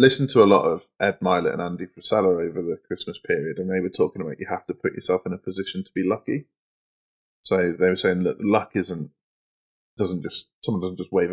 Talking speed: 230 wpm